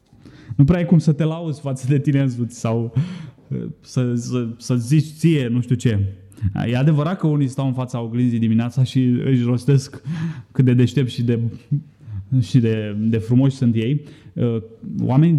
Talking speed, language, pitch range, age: 170 wpm, Romanian, 115-145 Hz, 20-39